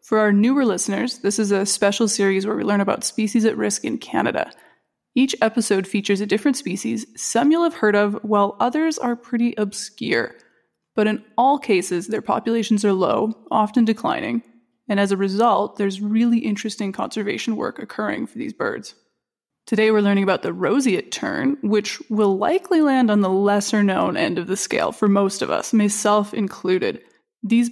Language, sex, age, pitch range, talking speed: English, female, 20-39, 200-235 Hz, 180 wpm